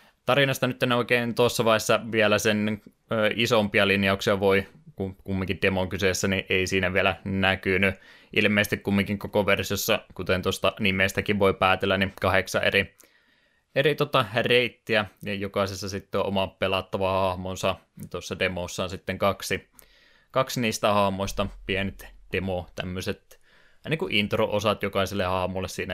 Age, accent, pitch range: 20-39, native, 95-105 Hz